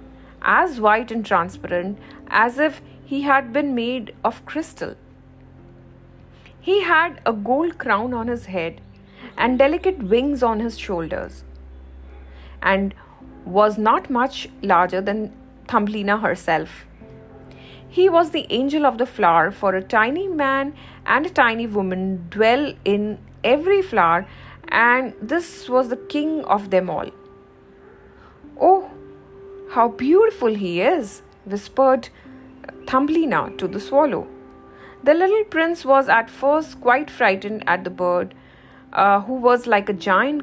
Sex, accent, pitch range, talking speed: female, Indian, 190-285 Hz, 130 wpm